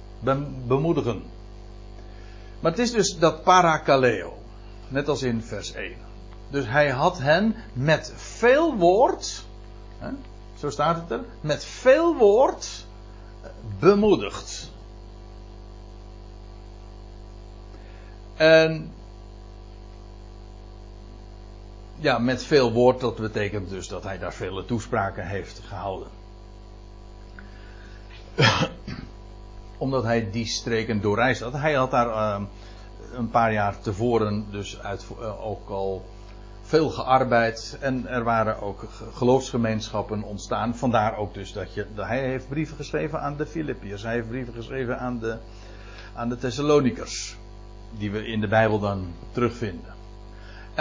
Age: 60-79